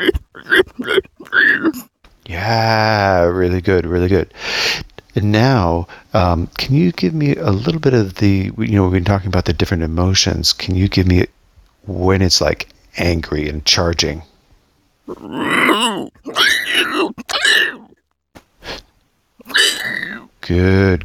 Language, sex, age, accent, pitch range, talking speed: English, male, 40-59, American, 90-120 Hz, 105 wpm